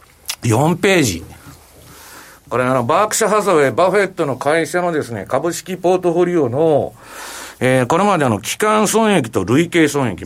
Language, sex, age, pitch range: Japanese, male, 60-79, 120-190 Hz